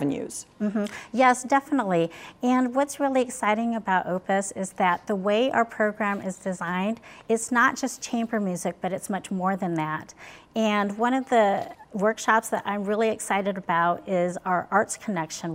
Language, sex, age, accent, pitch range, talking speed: English, female, 40-59, American, 185-220 Hz, 165 wpm